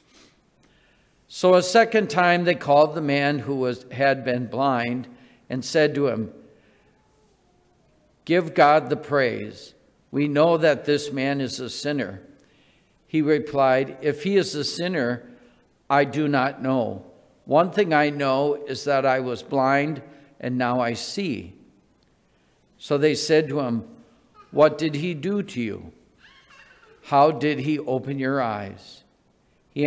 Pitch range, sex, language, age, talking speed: 130-150 Hz, male, English, 50-69, 140 wpm